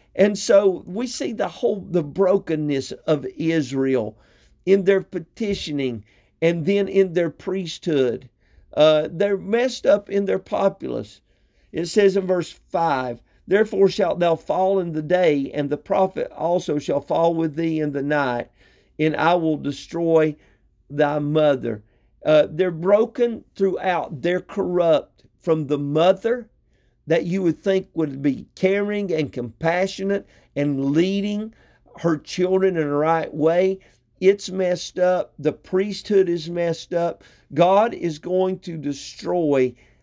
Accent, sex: American, male